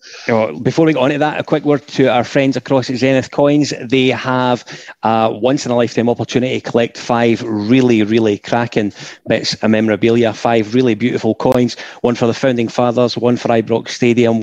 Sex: male